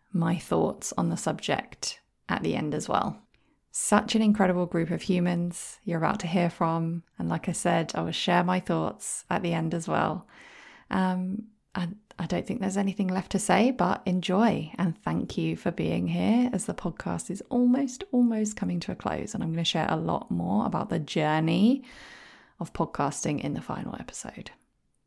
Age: 20-39